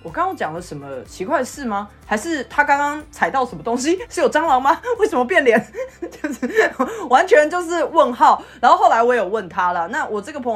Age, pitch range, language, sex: 20-39, 195-255 Hz, Chinese, female